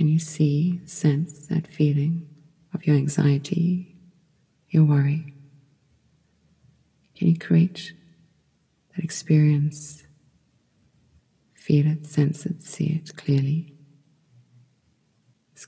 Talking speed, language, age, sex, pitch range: 90 wpm, English, 40-59, female, 150-170 Hz